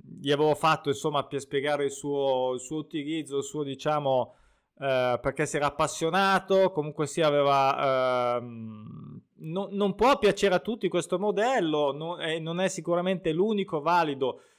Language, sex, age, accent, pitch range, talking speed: Italian, male, 20-39, native, 140-175 Hz, 145 wpm